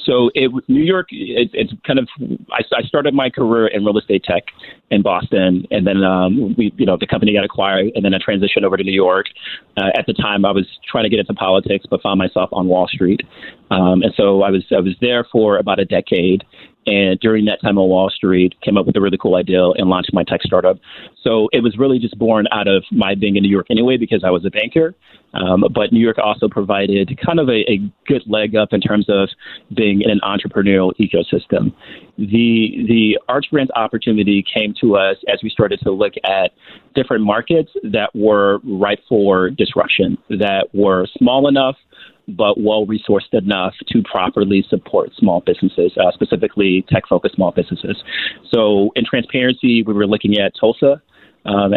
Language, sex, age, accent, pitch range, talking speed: English, male, 30-49, American, 100-120 Hz, 195 wpm